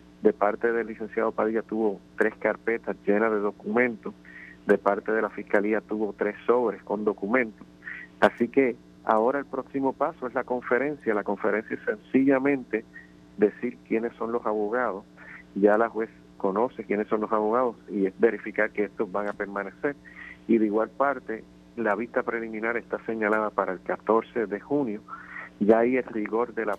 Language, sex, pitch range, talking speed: Spanish, male, 100-120 Hz, 170 wpm